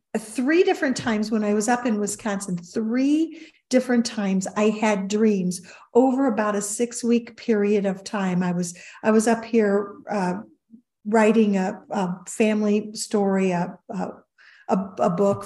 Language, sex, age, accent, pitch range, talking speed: English, female, 50-69, American, 205-265 Hz, 150 wpm